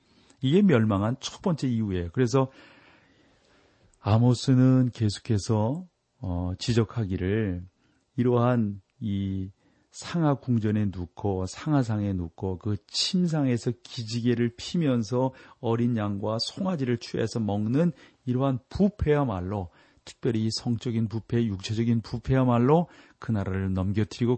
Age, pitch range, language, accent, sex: 40-59, 100-130 Hz, Korean, native, male